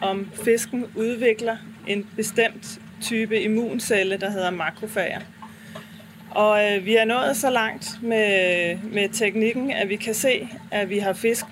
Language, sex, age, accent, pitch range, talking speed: Danish, female, 30-49, native, 195-225 Hz, 145 wpm